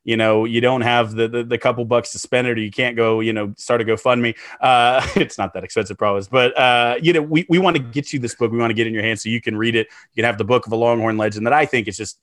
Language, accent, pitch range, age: English, American, 110-140 Hz, 30-49